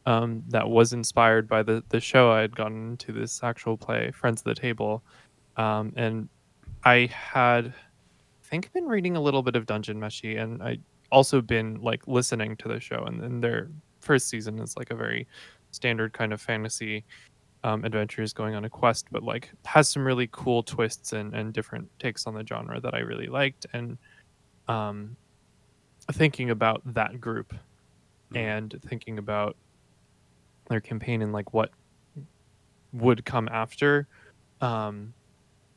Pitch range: 110-125 Hz